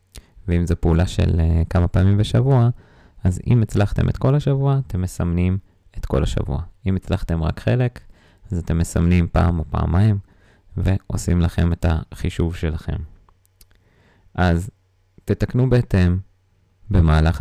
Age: 20-39